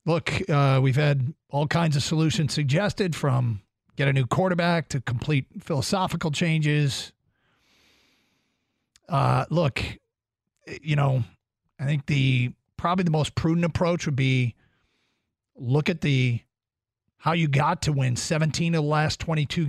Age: 40-59